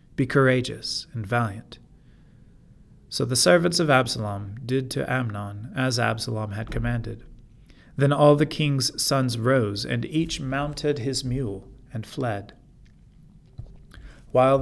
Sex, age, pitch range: male, 40-59, 115-140 Hz